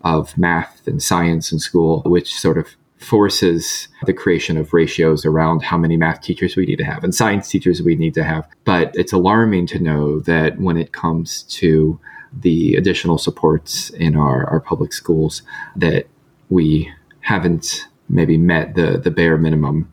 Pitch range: 80-95 Hz